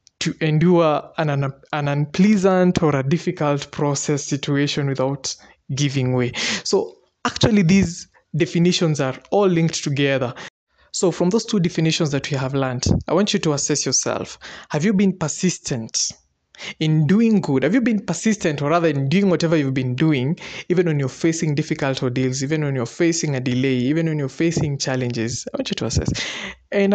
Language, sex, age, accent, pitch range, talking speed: English, male, 20-39, South African, 130-170 Hz, 175 wpm